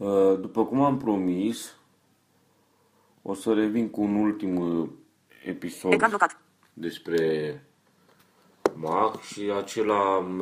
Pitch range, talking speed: 80-105 Hz, 90 wpm